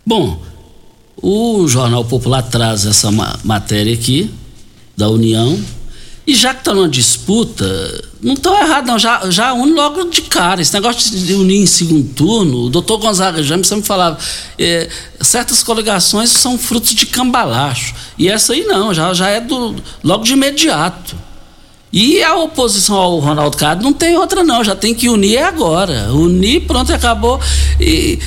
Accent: Brazilian